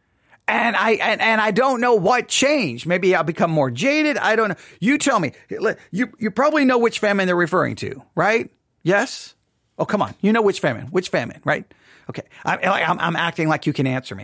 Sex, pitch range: male, 175-235 Hz